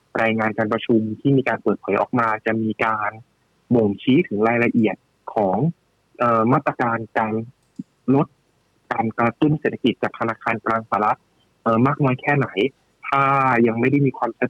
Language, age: Thai, 20-39